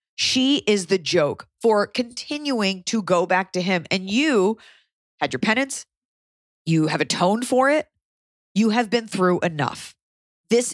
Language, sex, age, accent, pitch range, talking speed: English, female, 30-49, American, 175-245 Hz, 150 wpm